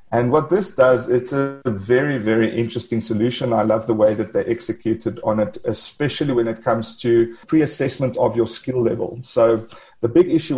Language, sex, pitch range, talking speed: English, male, 115-135 Hz, 185 wpm